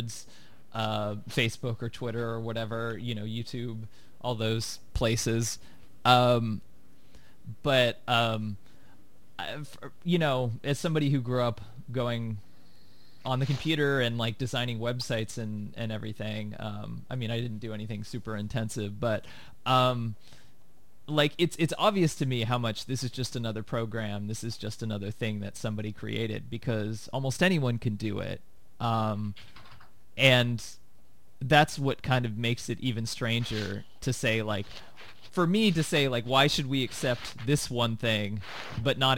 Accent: American